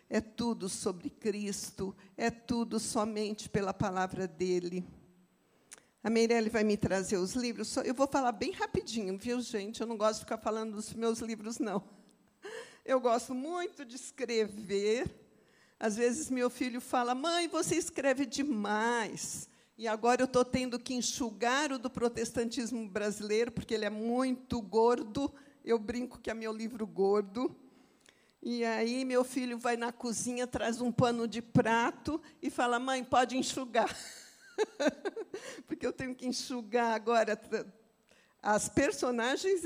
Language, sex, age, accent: Portuguese, female, 50-69, Brazilian